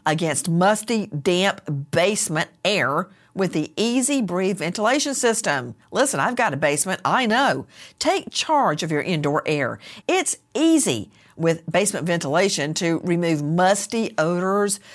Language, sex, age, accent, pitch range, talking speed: English, female, 50-69, American, 155-220 Hz, 135 wpm